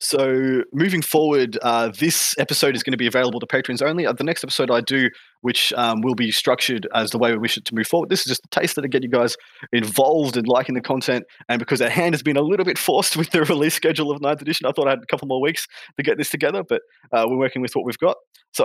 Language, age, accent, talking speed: English, 20-39, Australian, 275 wpm